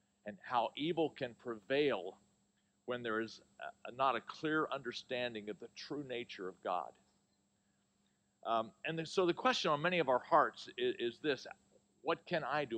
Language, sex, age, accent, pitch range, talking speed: English, male, 50-69, American, 120-165 Hz, 180 wpm